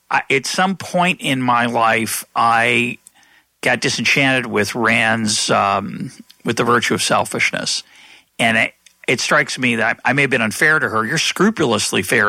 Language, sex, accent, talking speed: English, male, American, 175 wpm